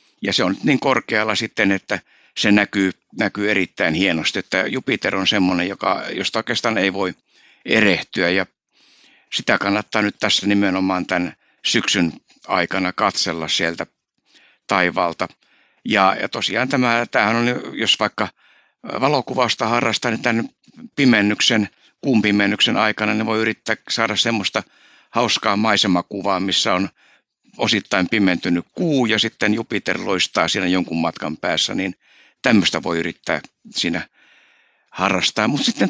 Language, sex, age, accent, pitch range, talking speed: Finnish, male, 60-79, native, 95-120 Hz, 125 wpm